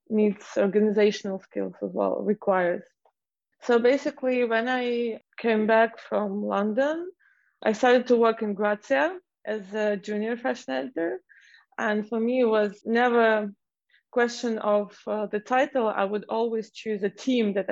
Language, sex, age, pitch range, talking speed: English, female, 20-39, 200-230 Hz, 150 wpm